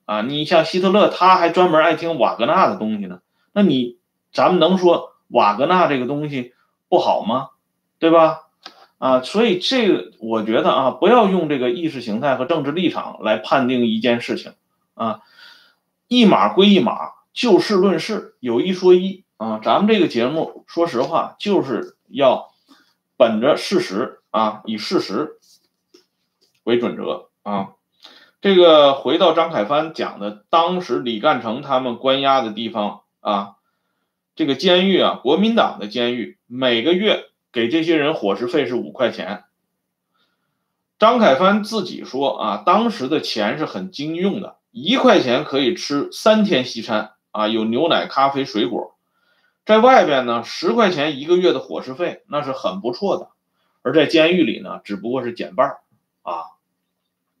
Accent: Chinese